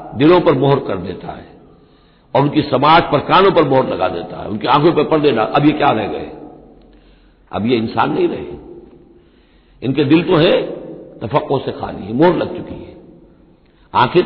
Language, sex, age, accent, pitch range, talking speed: Hindi, male, 60-79, native, 130-170 Hz, 185 wpm